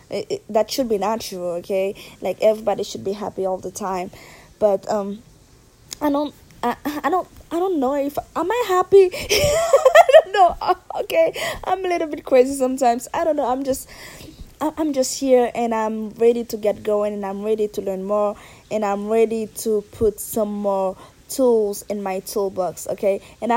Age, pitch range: 20-39, 200-275 Hz